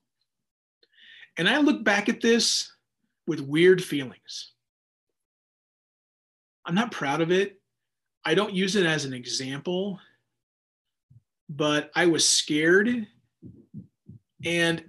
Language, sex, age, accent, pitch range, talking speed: English, male, 30-49, American, 160-245 Hz, 105 wpm